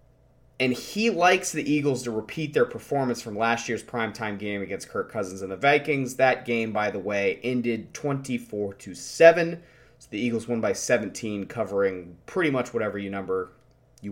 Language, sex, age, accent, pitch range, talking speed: English, male, 30-49, American, 110-150 Hz, 175 wpm